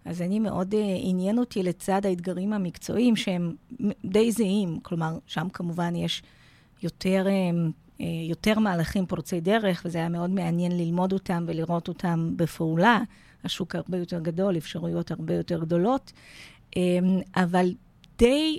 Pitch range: 170-200 Hz